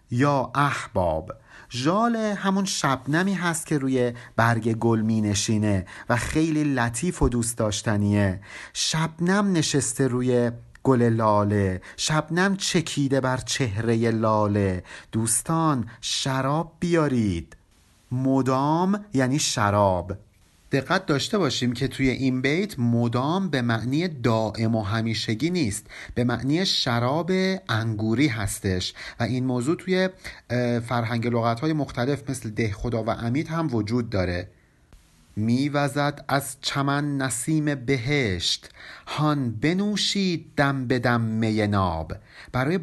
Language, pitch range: Persian, 115-165 Hz